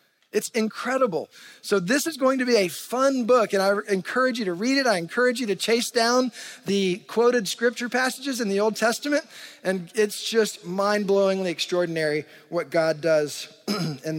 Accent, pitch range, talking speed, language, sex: American, 175-230 Hz, 175 wpm, English, male